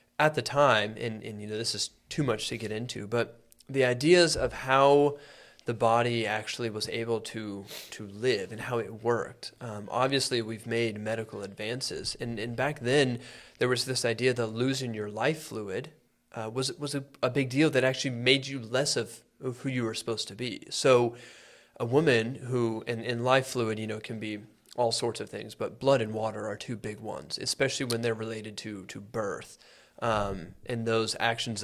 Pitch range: 110-130 Hz